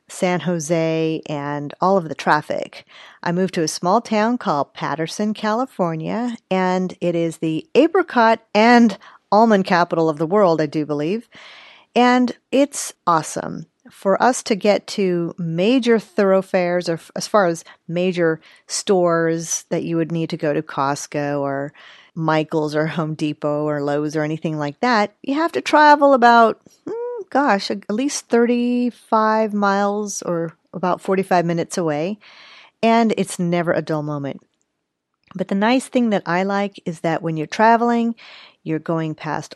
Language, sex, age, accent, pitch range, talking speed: English, female, 40-59, American, 165-215 Hz, 155 wpm